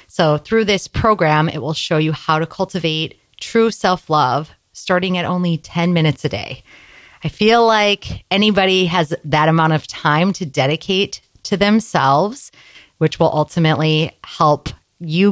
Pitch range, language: 145-180 Hz, English